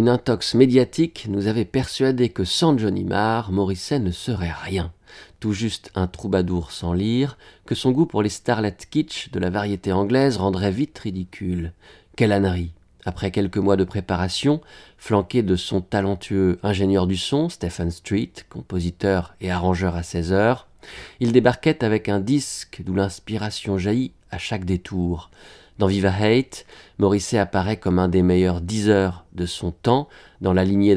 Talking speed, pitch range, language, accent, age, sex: 160 wpm, 90-110 Hz, French, French, 40-59, male